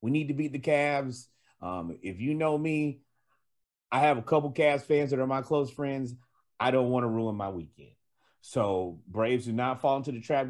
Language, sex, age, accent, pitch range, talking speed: English, male, 40-59, American, 100-140 Hz, 210 wpm